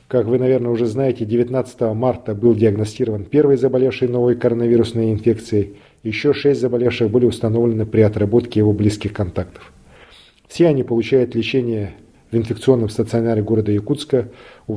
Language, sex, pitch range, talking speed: Russian, male, 110-130 Hz, 140 wpm